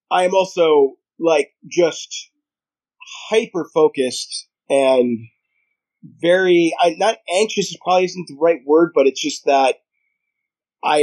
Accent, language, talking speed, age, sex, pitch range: American, English, 115 wpm, 30-49, male, 150-230 Hz